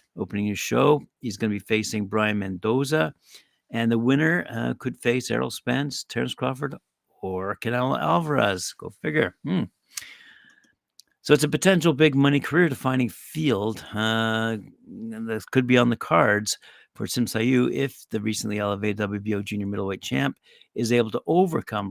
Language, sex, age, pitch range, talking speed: English, male, 50-69, 100-120 Hz, 150 wpm